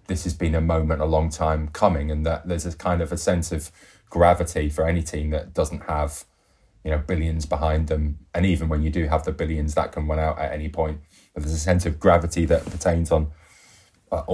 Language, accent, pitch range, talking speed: English, British, 80-90 Hz, 225 wpm